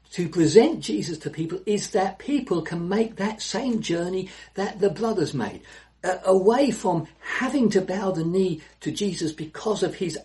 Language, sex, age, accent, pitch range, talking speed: English, male, 60-79, British, 140-190 Hz, 170 wpm